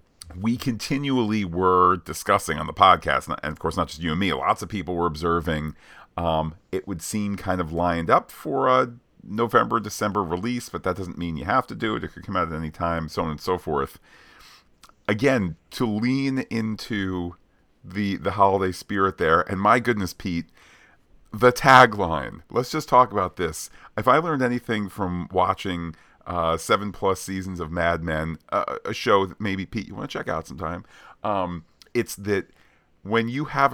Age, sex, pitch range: 40-59, male, 85-110 Hz